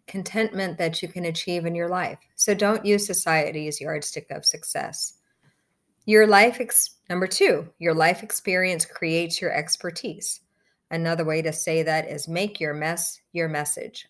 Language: English